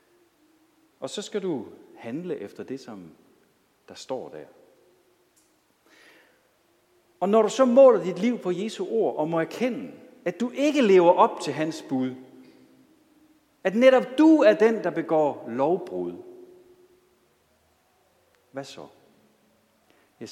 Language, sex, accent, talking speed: Danish, male, native, 125 wpm